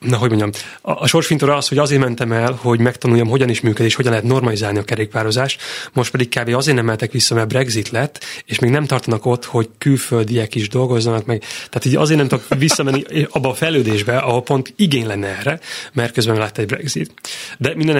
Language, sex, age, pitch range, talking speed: Hungarian, male, 30-49, 110-130 Hz, 205 wpm